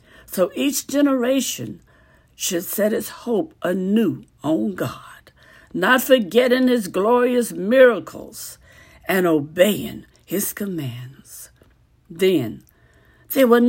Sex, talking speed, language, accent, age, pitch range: female, 95 wpm, English, American, 60-79, 170-240 Hz